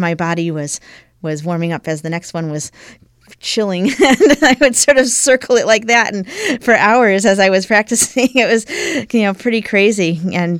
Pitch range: 170-205 Hz